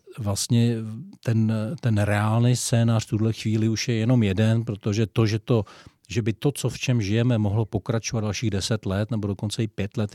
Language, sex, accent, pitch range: Czech, male, native, 105-120 Hz